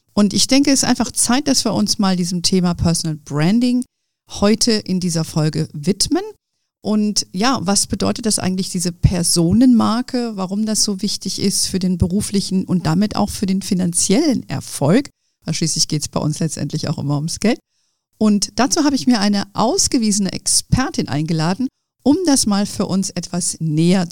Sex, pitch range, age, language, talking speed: female, 175-235 Hz, 50-69, German, 170 wpm